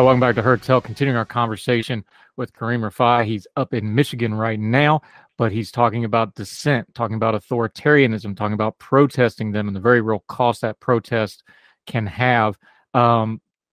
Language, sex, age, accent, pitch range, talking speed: English, male, 30-49, American, 110-130 Hz, 165 wpm